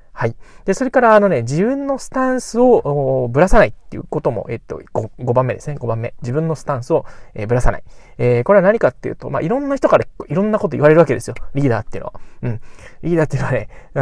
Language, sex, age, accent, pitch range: Japanese, male, 20-39, native, 120-185 Hz